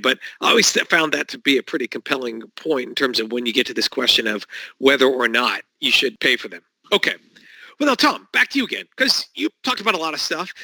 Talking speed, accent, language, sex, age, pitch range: 255 wpm, American, English, male, 50-69, 120-195 Hz